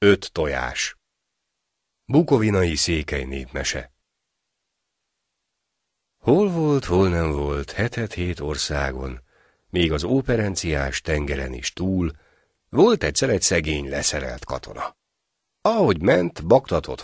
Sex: male